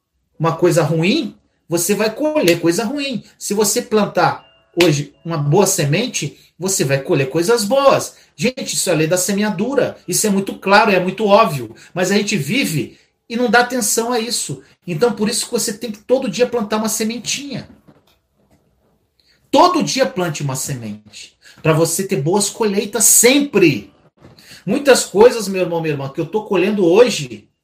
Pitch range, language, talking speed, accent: 185-245 Hz, Portuguese, 170 wpm, Brazilian